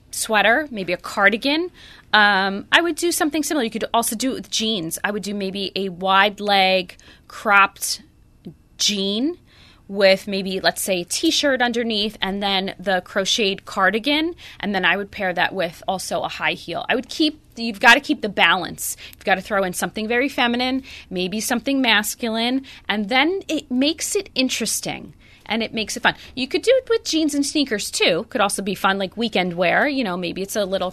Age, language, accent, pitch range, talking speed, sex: 20-39, English, American, 195-260 Hz, 200 wpm, female